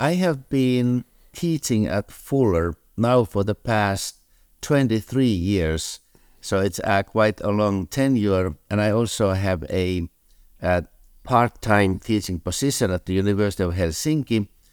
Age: 60-79